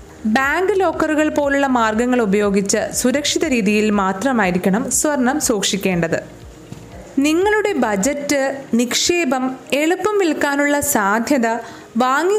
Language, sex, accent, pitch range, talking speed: Malayalam, female, native, 205-290 Hz, 80 wpm